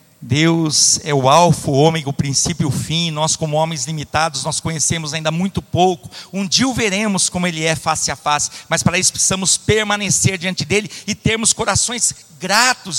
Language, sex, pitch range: Portuguese, male, 160-200 Hz